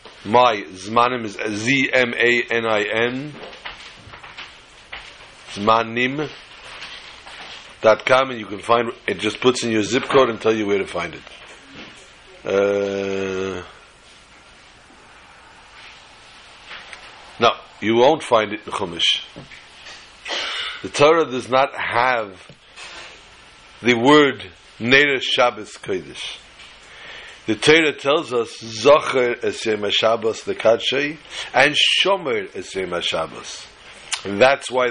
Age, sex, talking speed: 60-79, male, 100 wpm